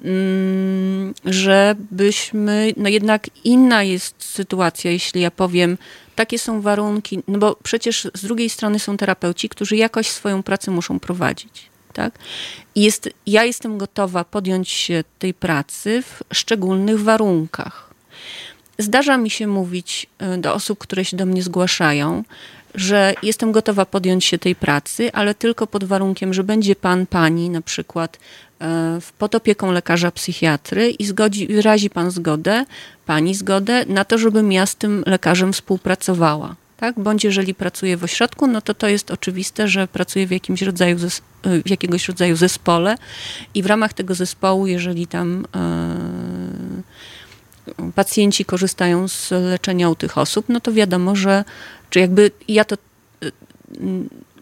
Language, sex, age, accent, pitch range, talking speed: Polish, female, 30-49, native, 180-210 Hz, 140 wpm